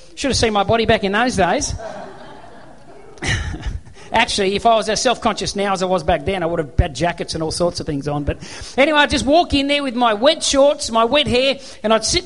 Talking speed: 240 wpm